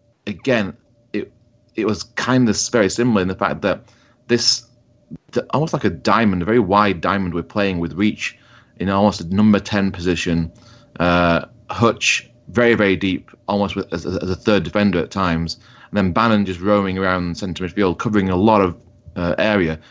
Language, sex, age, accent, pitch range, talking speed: English, male, 30-49, British, 90-110 Hz, 180 wpm